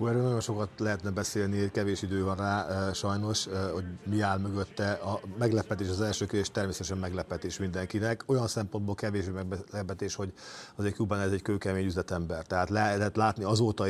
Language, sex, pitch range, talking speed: Hungarian, male, 95-110 Hz, 170 wpm